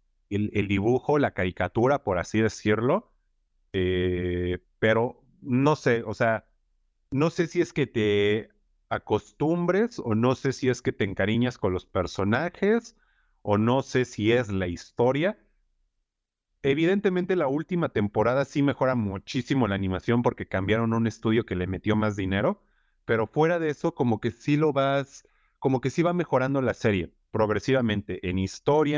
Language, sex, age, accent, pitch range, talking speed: Spanish, male, 40-59, Mexican, 100-135 Hz, 155 wpm